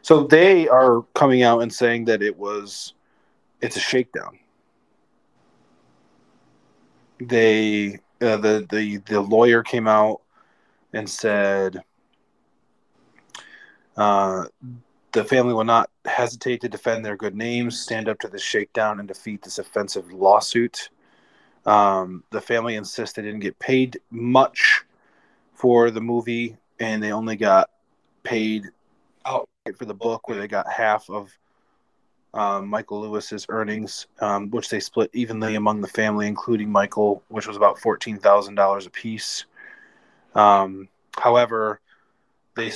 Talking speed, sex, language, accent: 130 wpm, male, English, American